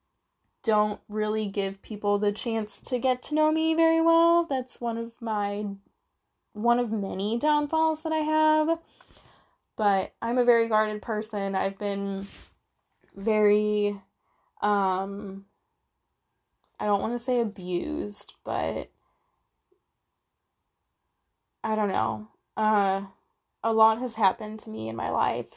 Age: 20-39